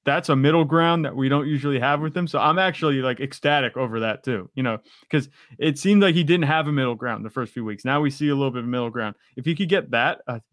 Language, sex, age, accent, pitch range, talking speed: English, male, 20-39, American, 125-150 Hz, 290 wpm